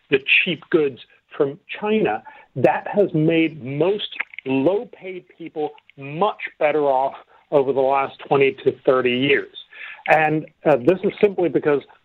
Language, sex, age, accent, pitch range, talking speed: English, male, 40-59, American, 145-225 Hz, 135 wpm